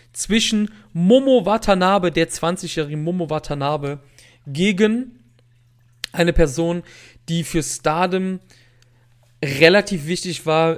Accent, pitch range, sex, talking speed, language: German, 140-180 Hz, male, 90 wpm, German